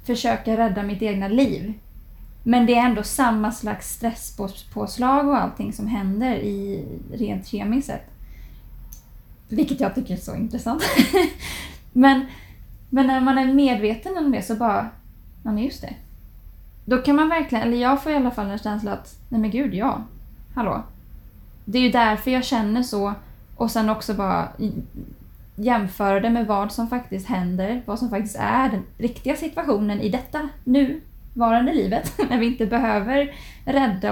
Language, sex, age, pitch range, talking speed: English, female, 20-39, 205-250 Hz, 160 wpm